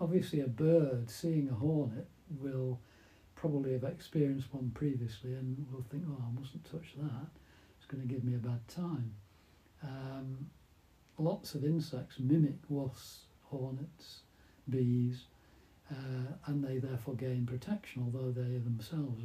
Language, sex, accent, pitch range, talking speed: English, male, British, 120-150 Hz, 135 wpm